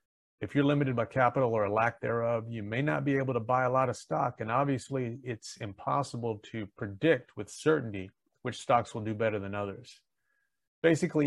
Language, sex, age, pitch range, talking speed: English, male, 40-59, 105-135 Hz, 190 wpm